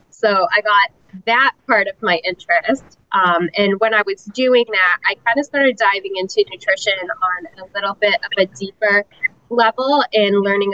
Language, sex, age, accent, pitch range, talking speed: English, female, 10-29, American, 185-230 Hz, 180 wpm